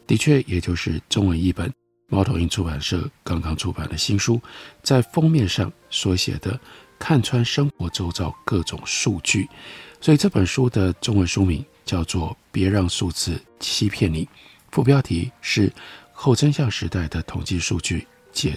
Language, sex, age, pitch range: Chinese, male, 50-69, 85-120 Hz